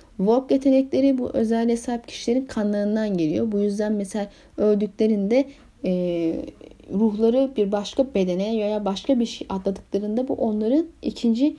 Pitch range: 195-250 Hz